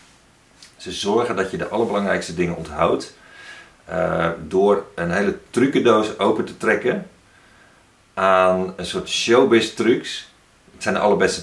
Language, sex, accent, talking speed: Dutch, male, Dutch, 120 wpm